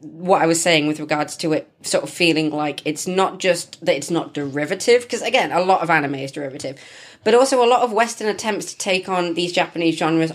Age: 20-39